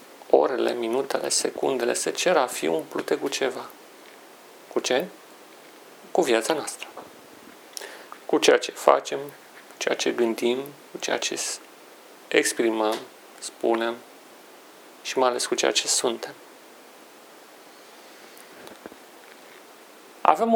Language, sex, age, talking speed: Romanian, male, 40-59, 105 wpm